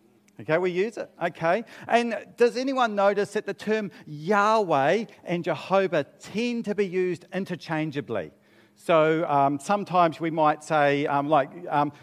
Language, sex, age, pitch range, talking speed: English, male, 40-59, 145-200 Hz, 145 wpm